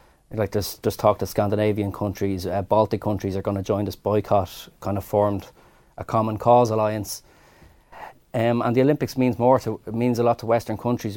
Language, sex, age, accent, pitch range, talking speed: English, male, 20-39, Irish, 100-115 Hz, 195 wpm